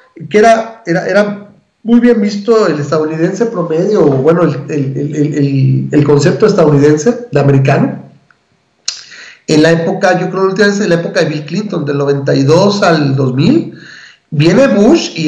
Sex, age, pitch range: male, 40-59, 155-210 Hz